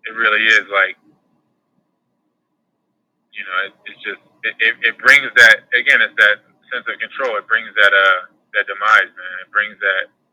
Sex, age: male, 20-39